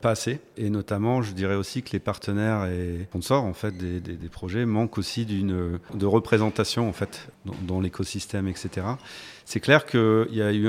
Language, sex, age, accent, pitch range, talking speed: French, male, 40-59, French, 95-115 Hz, 195 wpm